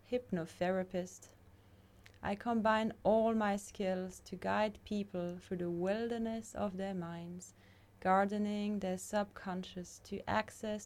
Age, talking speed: 20-39, 110 wpm